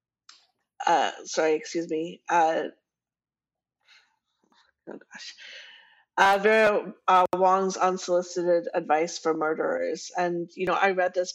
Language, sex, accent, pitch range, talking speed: English, female, American, 170-195 Hz, 110 wpm